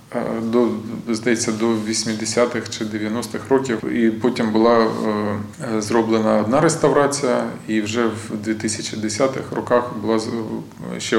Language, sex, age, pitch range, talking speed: Ukrainian, male, 20-39, 105-115 Hz, 115 wpm